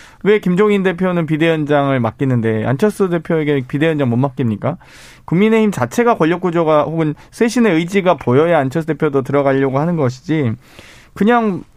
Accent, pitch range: native, 125-165 Hz